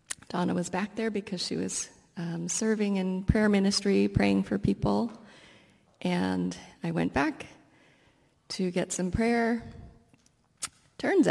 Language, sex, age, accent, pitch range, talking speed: English, female, 30-49, American, 175-235 Hz, 125 wpm